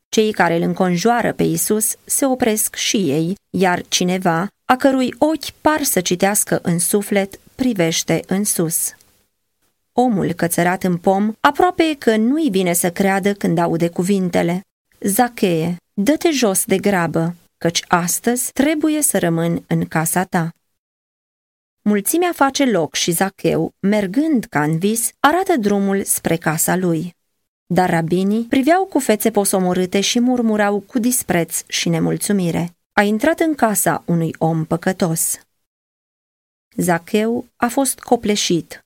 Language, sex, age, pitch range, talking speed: Romanian, female, 20-39, 175-230 Hz, 135 wpm